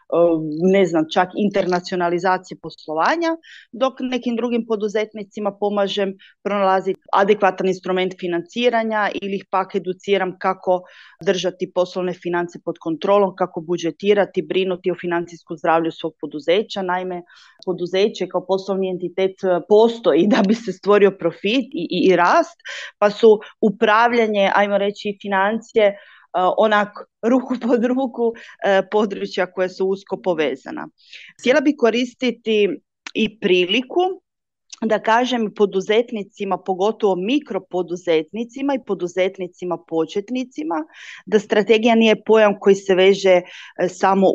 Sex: female